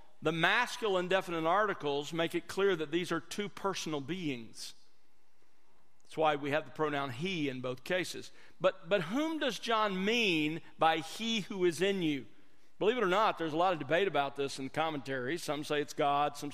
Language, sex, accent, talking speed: English, male, American, 190 wpm